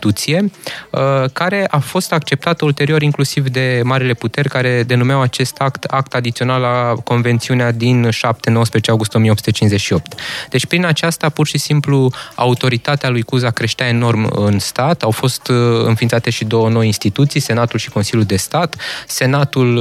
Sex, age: male, 20-39